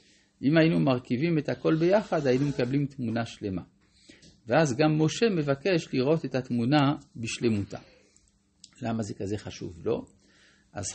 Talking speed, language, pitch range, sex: 135 wpm, Hebrew, 105-140 Hz, male